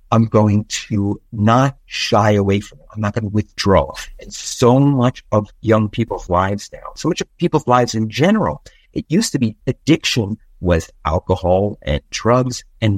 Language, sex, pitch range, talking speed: English, male, 105-155 Hz, 175 wpm